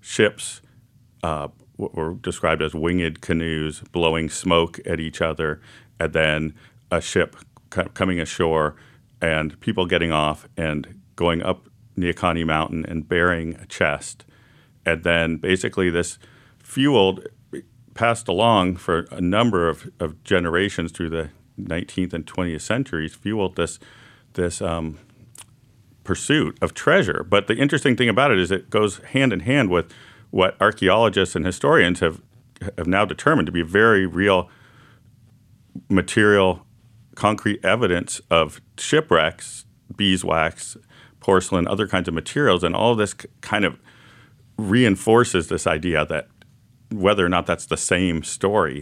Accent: American